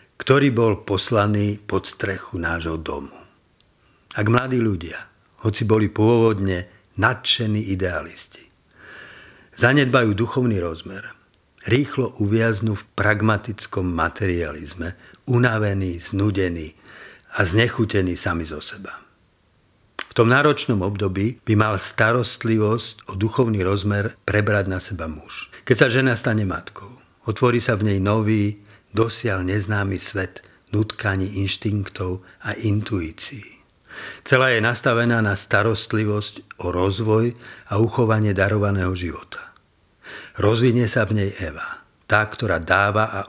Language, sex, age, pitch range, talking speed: Slovak, male, 50-69, 95-115 Hz, 110 wpm